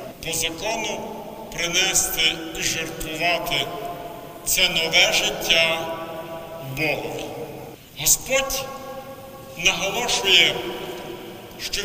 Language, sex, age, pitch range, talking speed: Ukrainian, male, 60-79, 170-220 Hz, 60 wpm